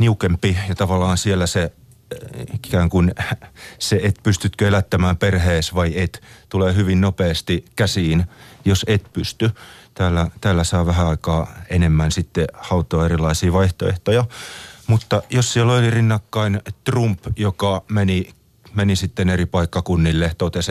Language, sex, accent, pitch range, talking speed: Finnish, male, native, 90-110 Hz, 125 wpm